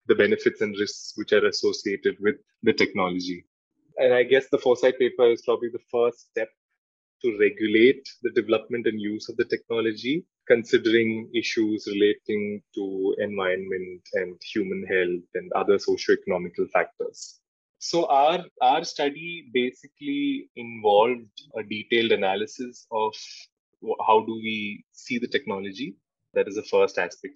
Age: 20-39